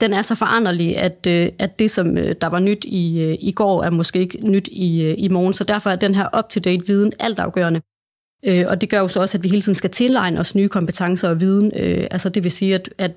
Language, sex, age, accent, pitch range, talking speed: Danish, female, 30-49, native, 175-200 Hz, 230 wpm